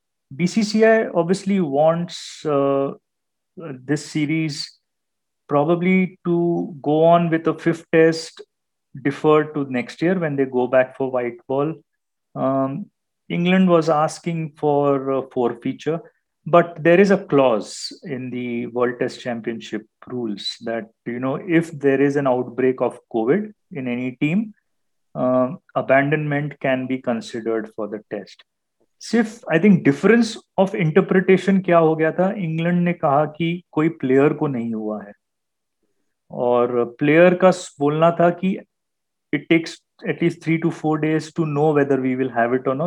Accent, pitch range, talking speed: native, 130-175 Hz, 145 wpm